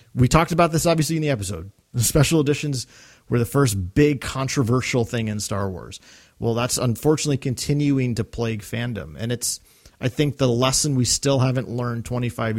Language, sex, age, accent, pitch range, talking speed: English, male, 30-49, American, 110-150 Hz, 180 wpm